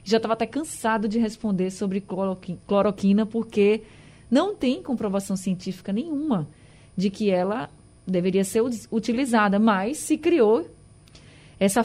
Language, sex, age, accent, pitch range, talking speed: Portuguese, female, 20-39, Brazilian, 190-230 Hz, 120 wpm